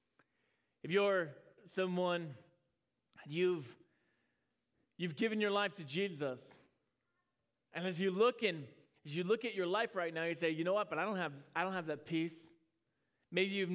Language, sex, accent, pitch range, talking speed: English, male, American, 150-190 Hz, 170 wpm